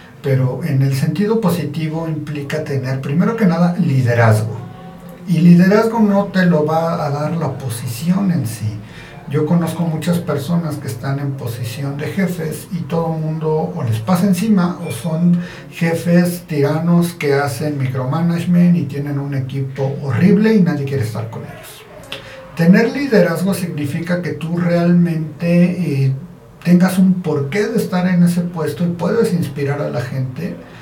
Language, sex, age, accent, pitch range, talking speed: Spanish, male, 50-69, Mexican, 140-175 Hz, 155 wpm